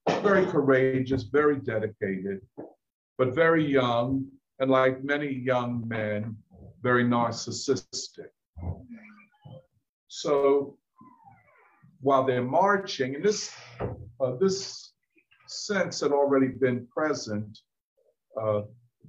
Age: 50-69